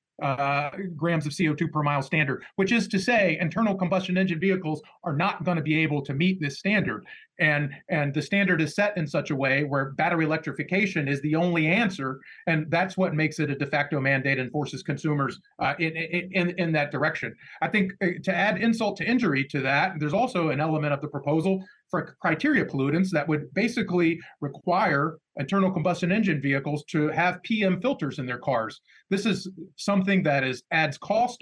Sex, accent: male, American